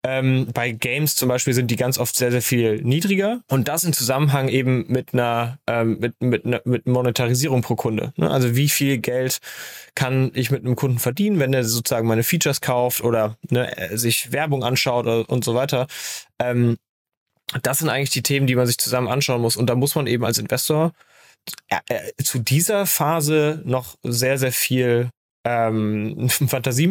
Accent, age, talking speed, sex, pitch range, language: German, 20-39, 165 wpm, male, 120-140 Hz, German